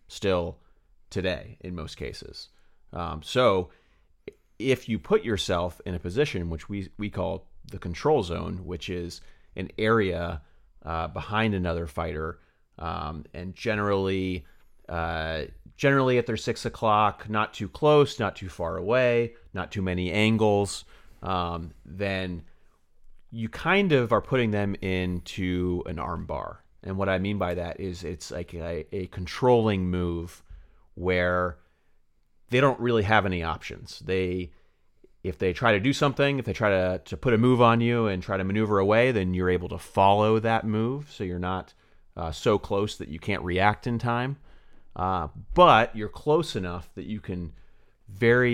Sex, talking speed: male, 160 wpm